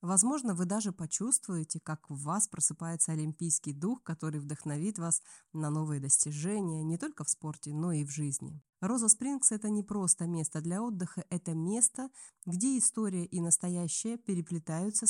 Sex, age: female, 20-39